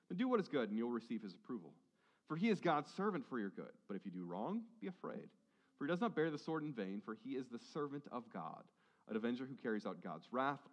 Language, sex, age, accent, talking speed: English, male, 40-59, American, 270 wpm